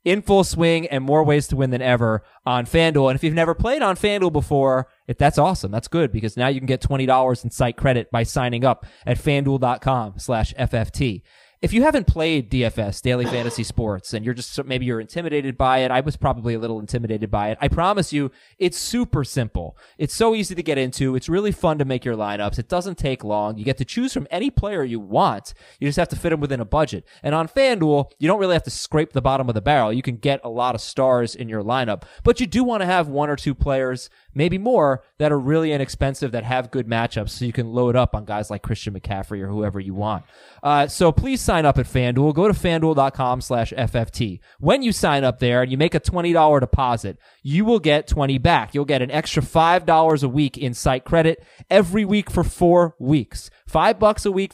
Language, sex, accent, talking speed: English, male, American, 230 wpm